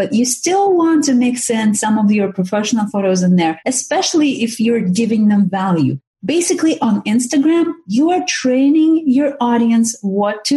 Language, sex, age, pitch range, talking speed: English, female, 30-49, 190-255 Hz, 170 wpm